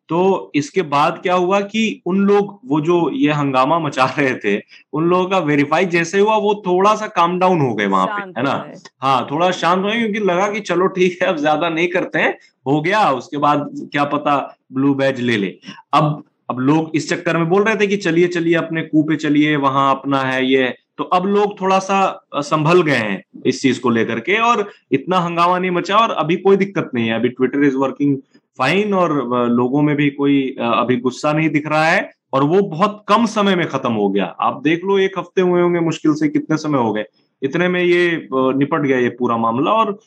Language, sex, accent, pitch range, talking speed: Hindi, male, native, 135-185 Hz, 220 wpm